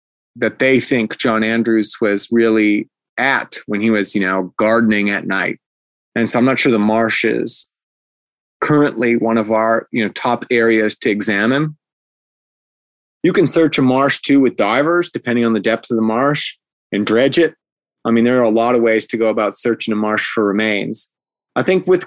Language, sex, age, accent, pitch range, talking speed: English, male, 30-49, American, 110-130 Hz, 195 wpm